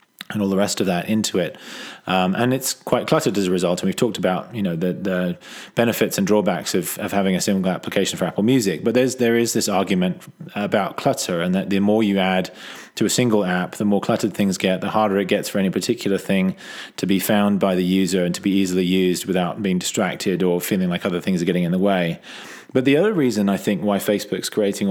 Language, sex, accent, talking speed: English, male, British, 245 wpm